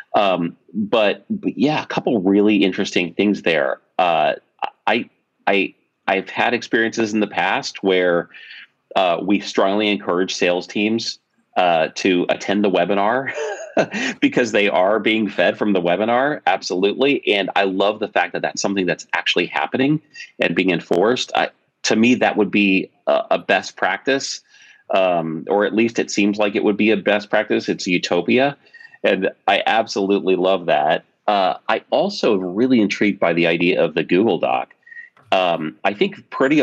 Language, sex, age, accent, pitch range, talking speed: English, male, 30-49, American, 90-115 Hz, 165 wpm